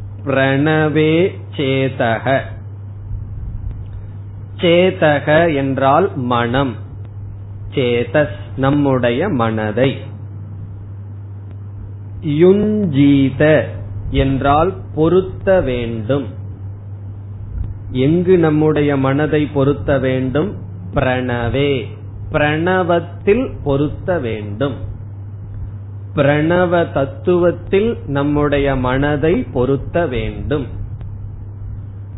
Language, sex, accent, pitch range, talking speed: Tamil, male, native, 100-155 Hz, 50 wpm